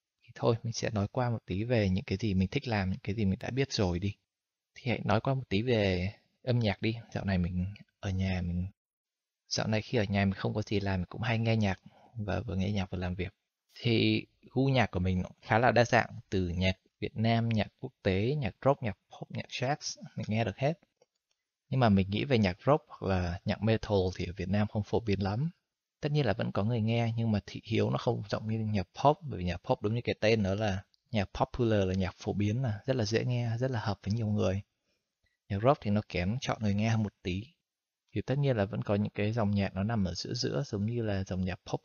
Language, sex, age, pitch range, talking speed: Vietnamese, male, 20-39, 100-115 Hz, 255 wpm